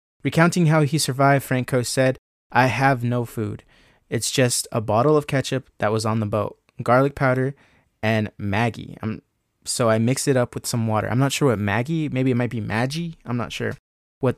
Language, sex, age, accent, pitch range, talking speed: English, male, 20-39, American, 115-140 Hz, 195 wpm